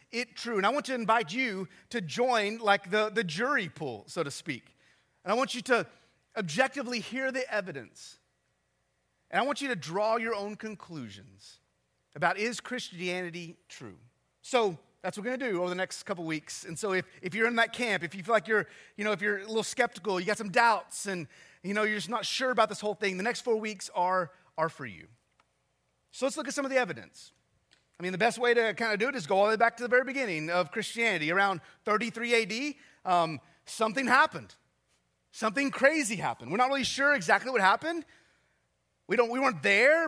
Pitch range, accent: 170-240 Hz, American